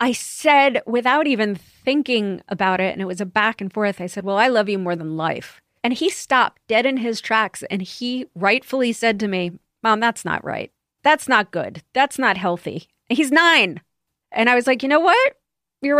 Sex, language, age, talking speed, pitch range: female, English, 30-49, 210 wpm, 180-235 Hz